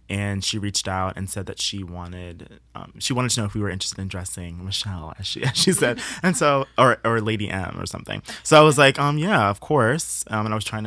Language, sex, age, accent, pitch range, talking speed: English, male, 20-39, American, 90-105 Hz, 260 wpm